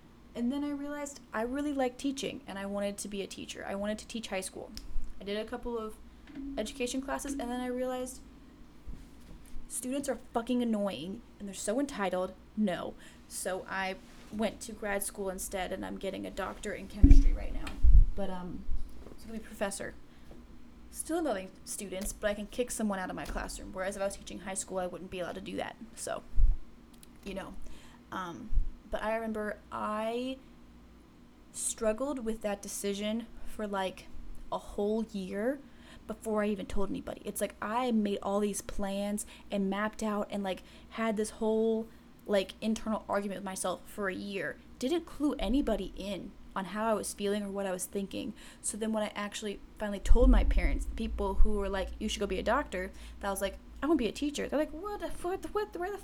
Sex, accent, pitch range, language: female, American, 200-255 Hz, English